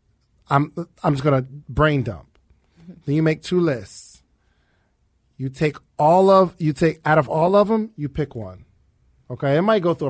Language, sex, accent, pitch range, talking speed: English, male, American, 125-155 Hz, 185 wpm